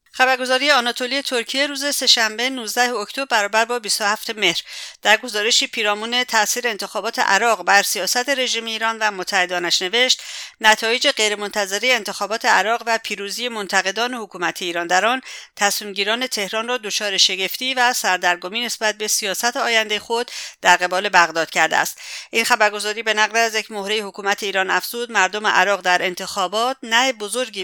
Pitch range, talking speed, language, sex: 190-230 Hz, 150 wpm, English, female